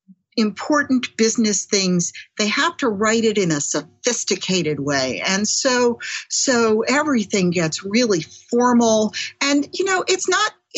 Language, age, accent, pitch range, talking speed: English, 50-69, American, 180-245 Hz, 135 wpm